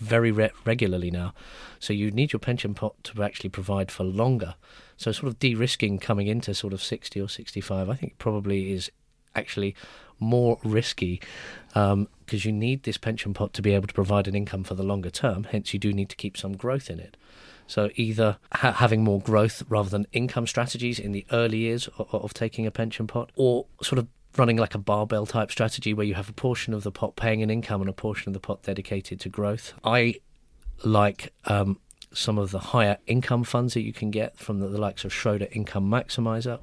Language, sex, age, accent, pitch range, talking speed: English, male, 30-49, British, 100-115 Hz, 215 wpm